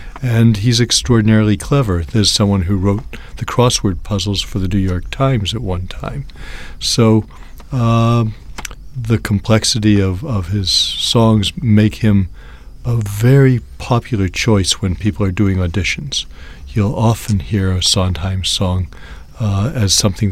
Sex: male